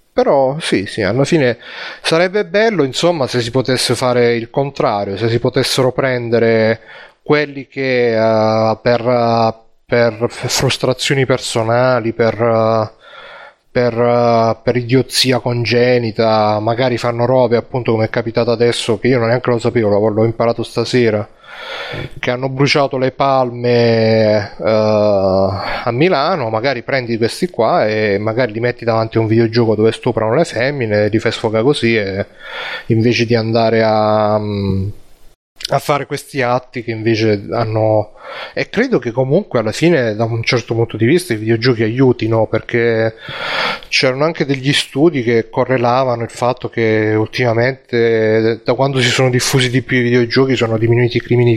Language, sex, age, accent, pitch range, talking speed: Italian, male, 30-49, native, 110-130 Hz, 145 wpm